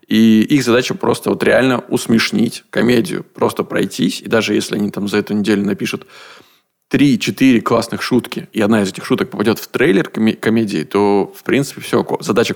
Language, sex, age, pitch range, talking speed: Russian, male, 20-39, 105-120 Hz, 170 wpm